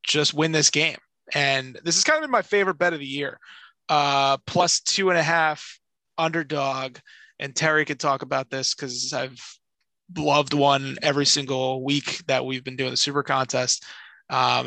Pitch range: 135-160 Hz